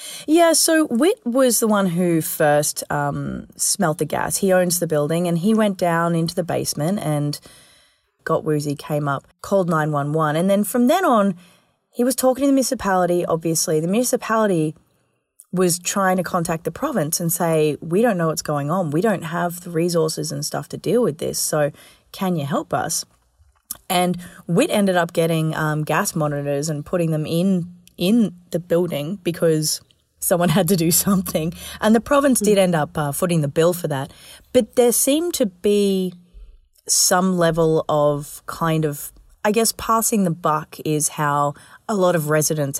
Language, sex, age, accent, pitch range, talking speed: English, female, 20-39, Australian, 155-195 Hz, 180 wpm